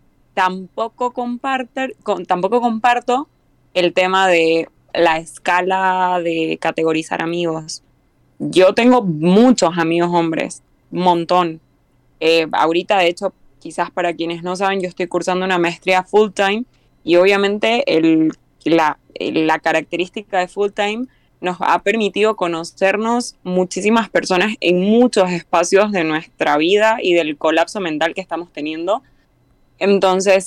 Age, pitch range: 20-39, 170-205 Hz